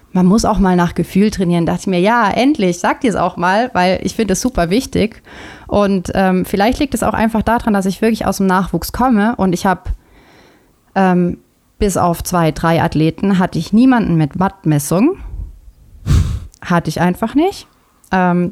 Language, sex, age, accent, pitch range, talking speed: German, female, 30-49, German, 170-220 Hz, 180 wpm